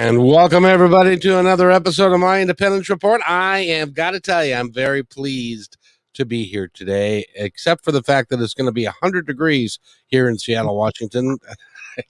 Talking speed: 195 wpm